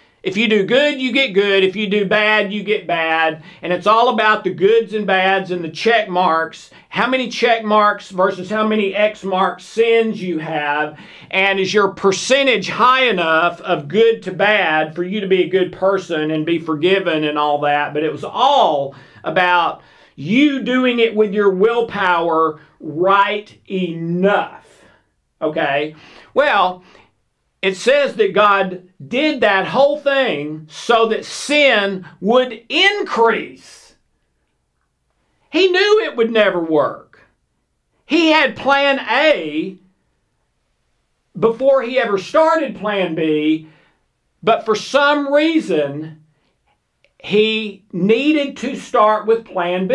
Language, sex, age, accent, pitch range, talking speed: English, male, 40-59, American, 165-230 Hz, 140 wpm